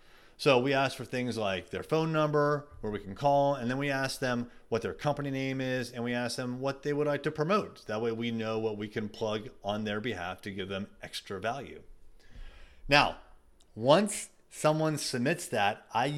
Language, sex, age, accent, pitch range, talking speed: English, male, 30-49, American, 105-145 Hz, 205 wpm